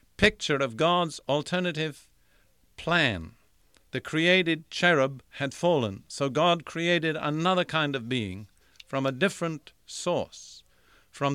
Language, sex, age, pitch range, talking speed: English, male, 50-69, 115-155 Hz, 115 wpm